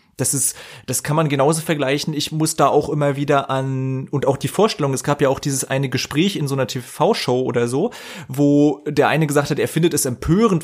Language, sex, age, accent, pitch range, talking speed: German, male, 30-49, German, 125-150 Hz, 225 wpm